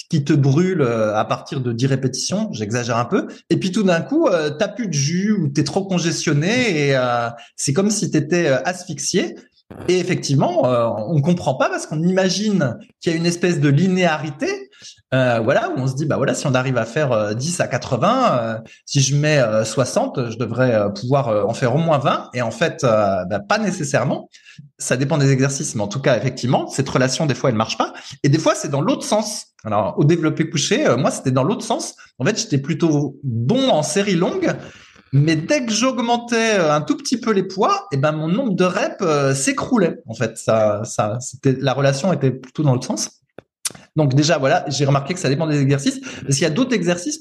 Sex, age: male, 20-39